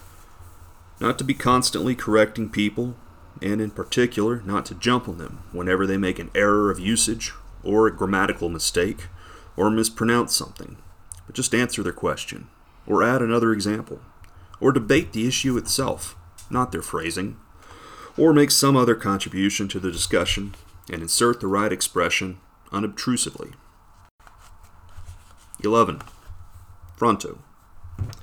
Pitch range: 90-115 Hz